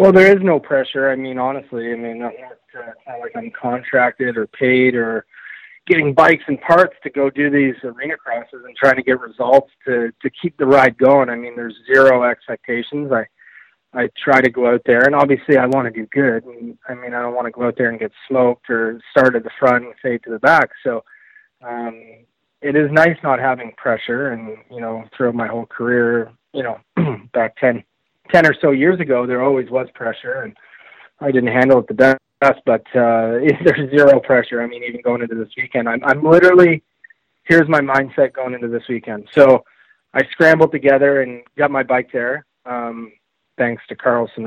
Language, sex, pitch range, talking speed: English, male, 120-145 Hz, 205 wpm